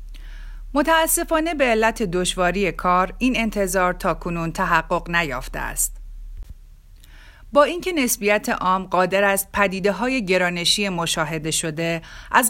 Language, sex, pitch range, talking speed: Persian, female, 170-210 Hz, 105 wpm